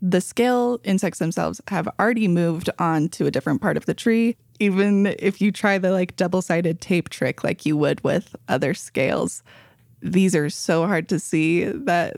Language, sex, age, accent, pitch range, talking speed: English, female, 20-39, American, 165-205 Hz, 180 wpm